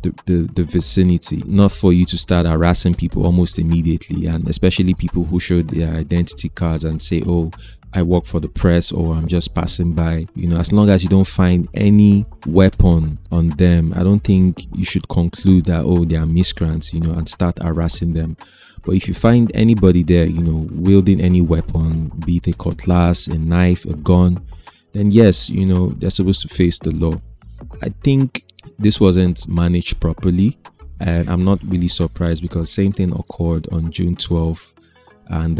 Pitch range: 80-95 Hz